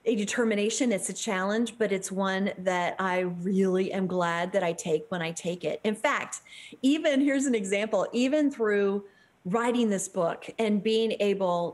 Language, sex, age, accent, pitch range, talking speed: English, female, 40-59, American, 195-260 Hz, 175 wpm